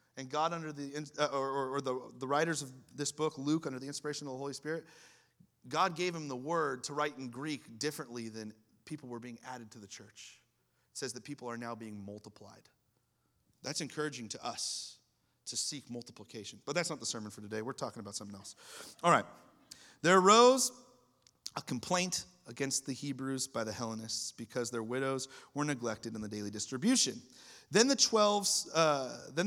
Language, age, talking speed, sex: English, 30-49, 180 wpm, male